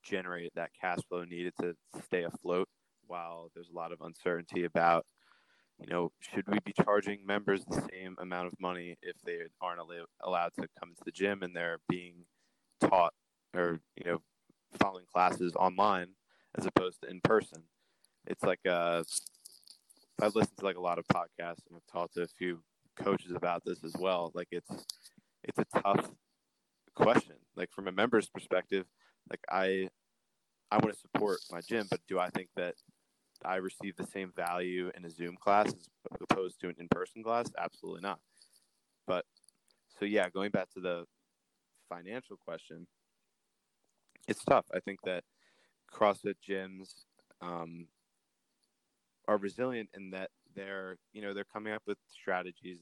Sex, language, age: male, English, 20-39